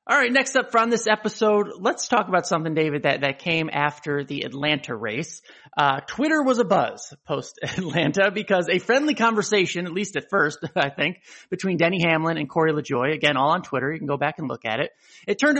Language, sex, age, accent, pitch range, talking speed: English, male, 30-49, American, 155-210 Hz, 210 wpm